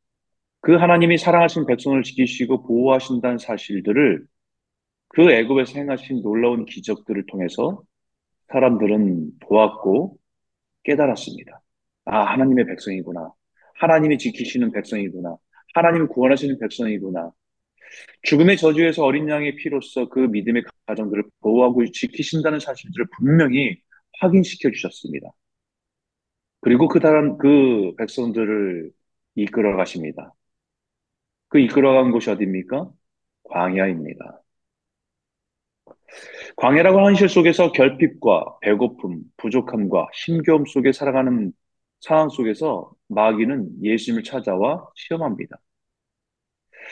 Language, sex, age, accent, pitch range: Korean, male, 30-49, native, 105-155 Hz